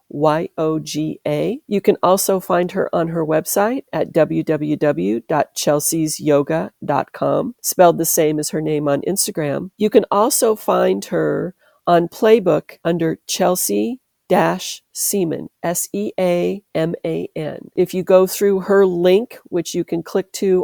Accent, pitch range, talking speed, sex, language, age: American, 155-185 Hz, 115 wpm, female, English, 40-59